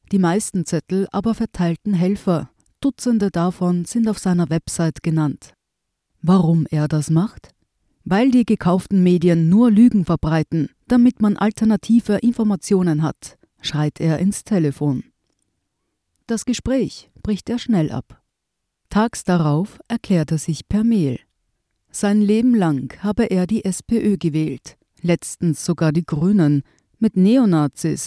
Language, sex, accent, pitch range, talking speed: German, female, German, 160-205 Hz, 130 wpm